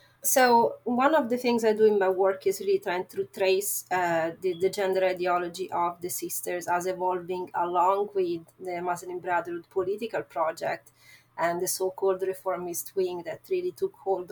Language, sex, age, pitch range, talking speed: English, female, 30-49, 170-205 Hz, 170 wpm